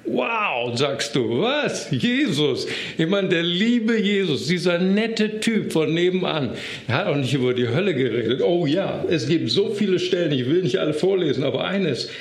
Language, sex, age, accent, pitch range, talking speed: German, male, 60-79, German, 135-180 Hz, 180 wpm